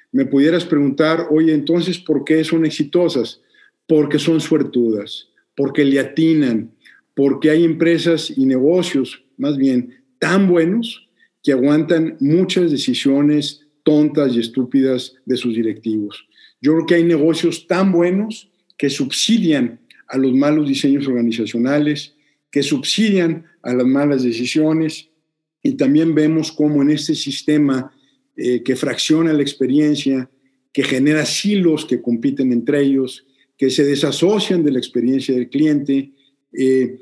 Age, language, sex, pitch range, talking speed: 50-69, Spanish, male, 135-165 Hz, 135 wpm